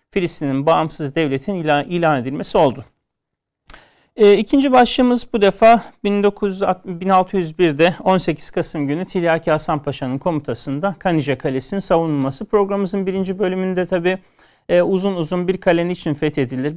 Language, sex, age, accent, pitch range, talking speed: Turkish, male, 40-59, native, 150-190 Hz, 120 wpm